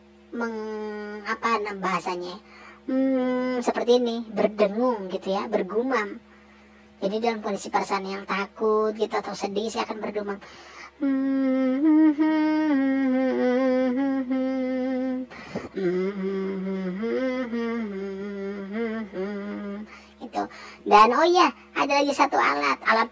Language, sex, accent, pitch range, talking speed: Indonesian, male, native, 185-235 Hz, 85 wpm